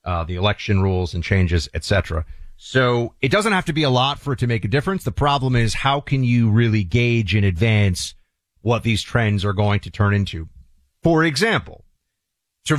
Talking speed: 195 wpm